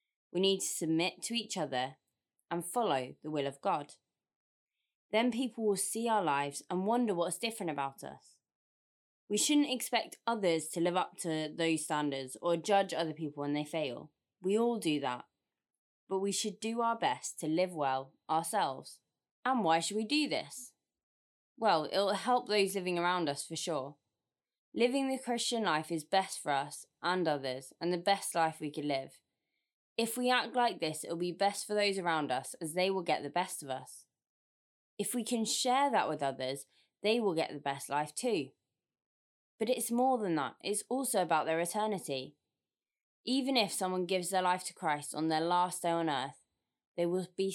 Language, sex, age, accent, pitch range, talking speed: English, female, 20-39, British, 150-215 Hz, 190 wpm